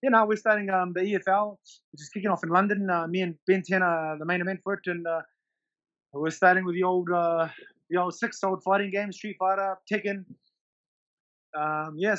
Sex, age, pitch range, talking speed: male, 20-39, 160-195 Hz, 200 wpm